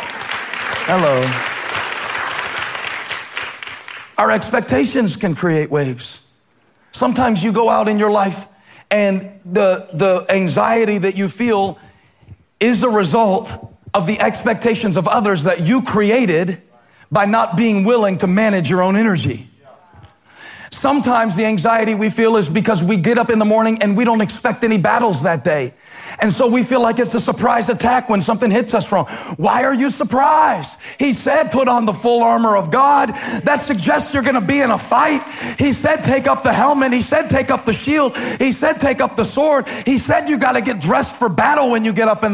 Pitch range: 190-255 Hz